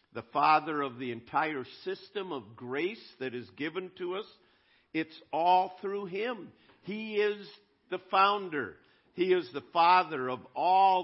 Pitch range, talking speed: 130-190 Hz, 145 wpm